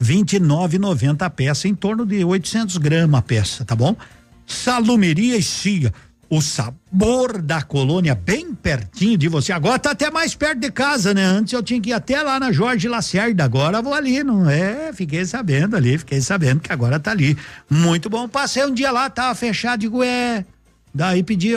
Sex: male